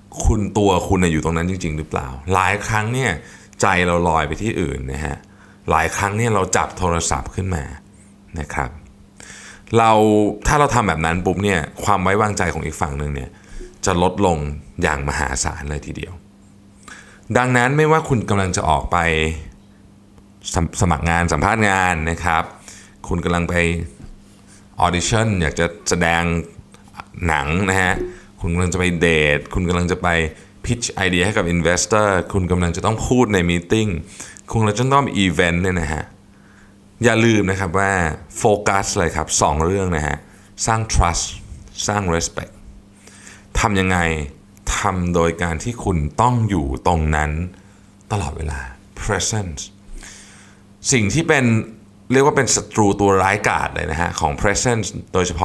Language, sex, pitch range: Thai, male, 85-100 Hz